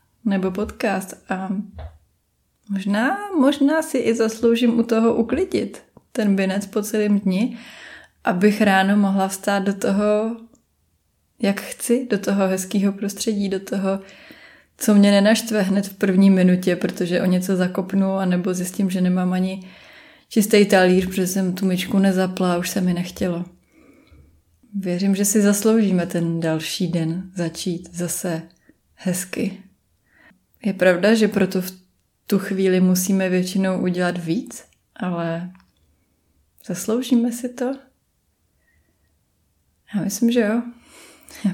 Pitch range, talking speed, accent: 185-215 Hz, 125 wpm, native